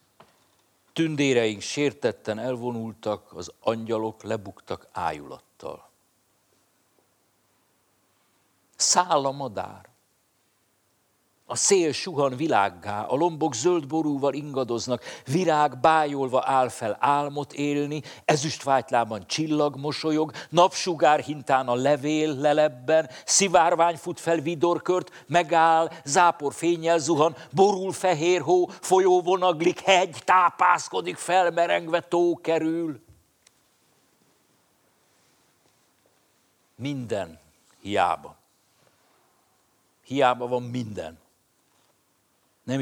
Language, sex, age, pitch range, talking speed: Hungarian, male, 60-79, 115-165 Hz, 80 wpm